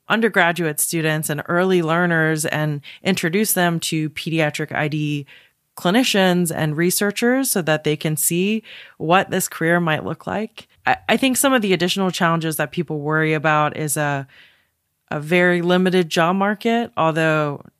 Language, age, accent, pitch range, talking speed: English, 20-39, American, 150-180 Hz, 150 wpm